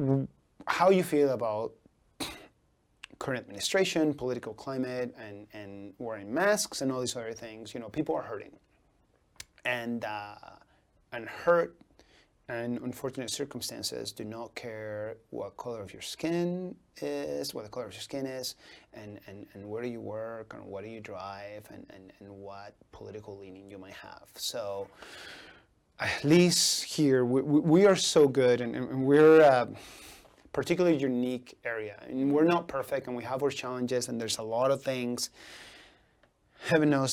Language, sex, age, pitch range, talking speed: English, male, 30-49, 110-145 Hz, 160 wpm